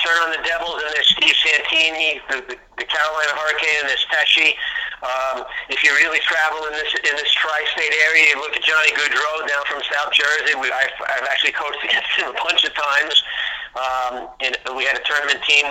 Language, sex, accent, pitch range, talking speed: English, male, American, 130-150 Hz, 205 wpm